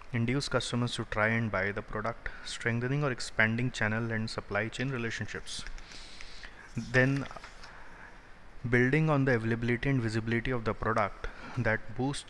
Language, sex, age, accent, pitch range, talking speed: English, male, 20-39, Indian, 110-125 Hz, 135 wpm